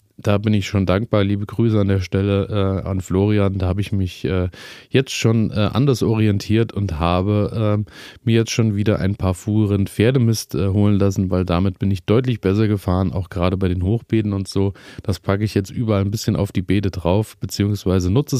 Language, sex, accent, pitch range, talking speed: German, male, German, 95-110 Hz, 210 wpm